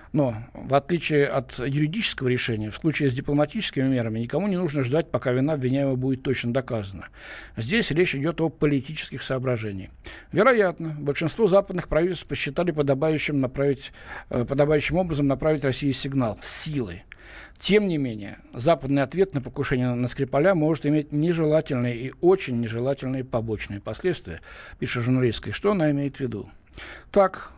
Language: Russian